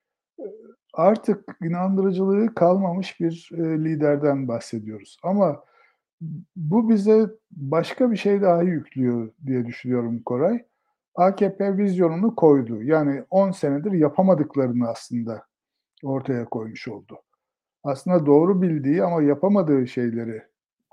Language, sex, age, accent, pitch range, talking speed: Turkish, male, 60-79, native, 140-195 Hz, 95 wpm